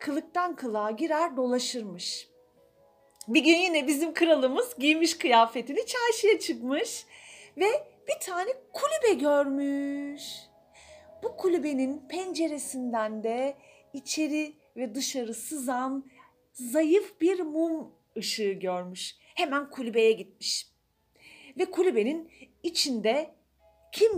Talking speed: 95 wpm